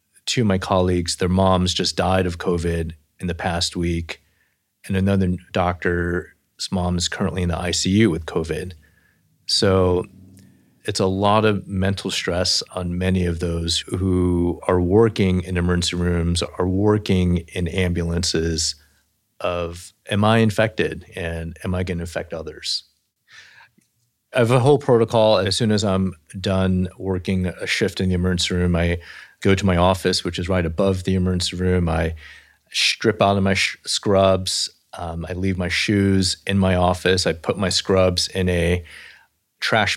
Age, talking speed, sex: 30-49, 160 wpm, male